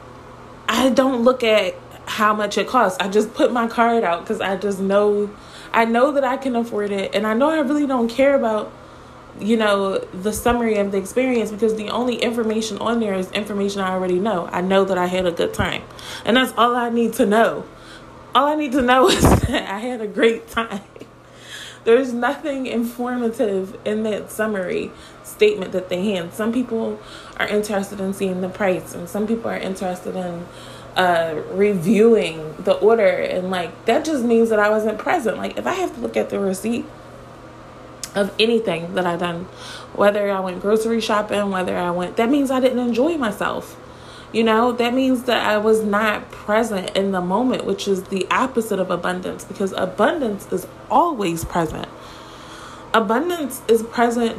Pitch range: 195-235 Hz